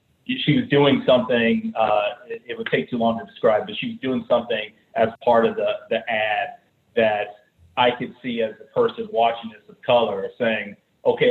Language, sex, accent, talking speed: English, male, American, 185 wpm